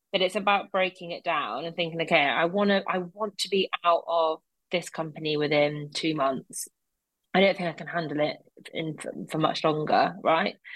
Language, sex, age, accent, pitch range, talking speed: English, female, 30-49, British, 160-205 Hz, 195 wpm